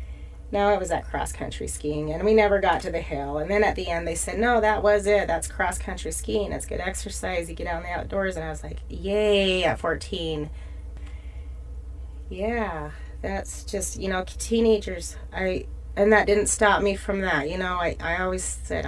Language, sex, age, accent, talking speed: English, female, 30-49, American, 200 wpm